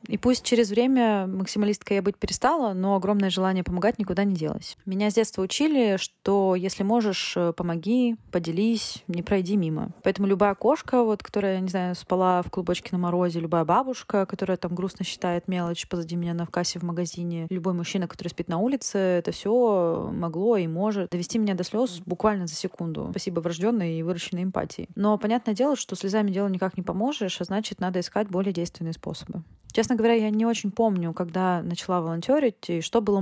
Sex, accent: female, native